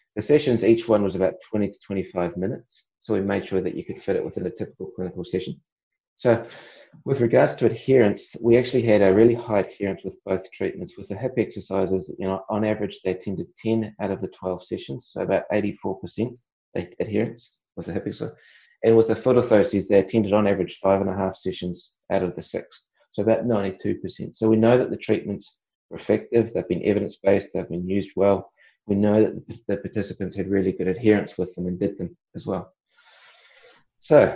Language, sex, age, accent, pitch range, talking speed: English, male, 30-49, Australian, 95-110 Hz, 200 wpm